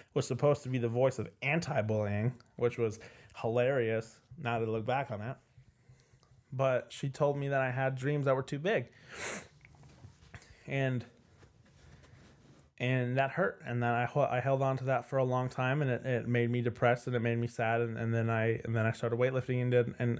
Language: English